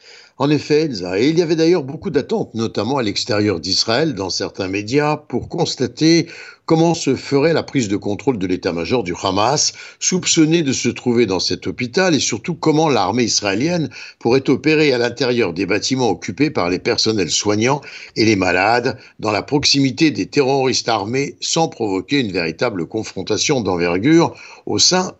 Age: 60-79